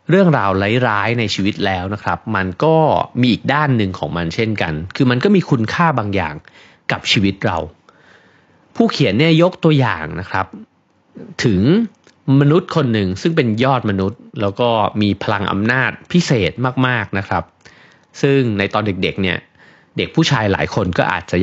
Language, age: Thai, 30-49